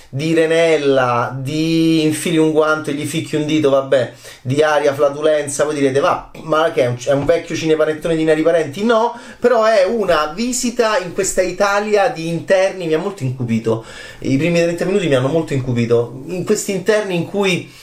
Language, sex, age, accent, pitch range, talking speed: Italian, male, 30-49, native, 125-175 Hz, 190 wpm